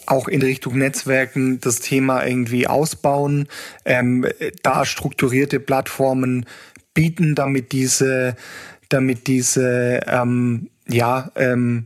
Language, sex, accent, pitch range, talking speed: German, male, German, 130-145 Hz, 95 wpm